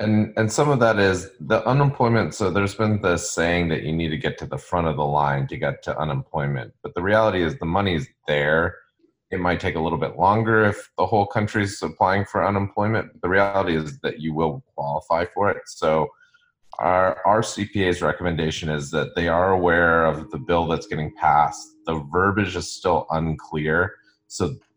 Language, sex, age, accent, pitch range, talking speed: English, male, 30-49, American, 80-105 Hz, 195 wpm